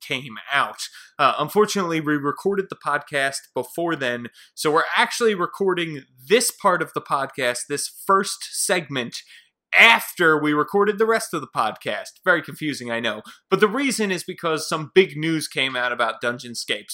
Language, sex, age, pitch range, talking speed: English, male, 30-49, 125-175 Hz, 165 wpm